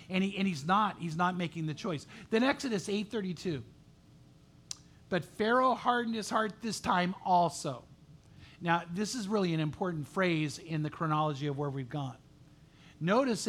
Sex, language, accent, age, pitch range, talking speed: male, English, American, 50-69, 155-195 Hz, 160 wpm